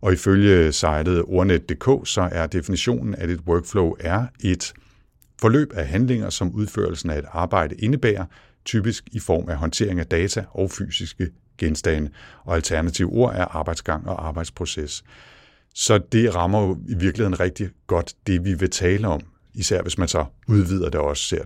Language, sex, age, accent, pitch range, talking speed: Danish, male, 60-79, native, 80-100 Hz, 165 wpm